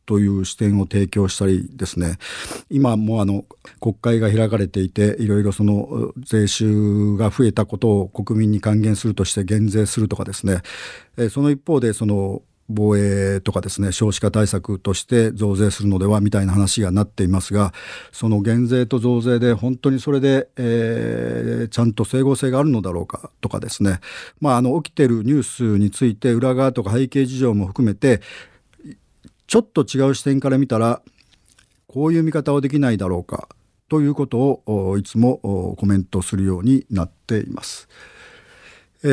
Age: 50-69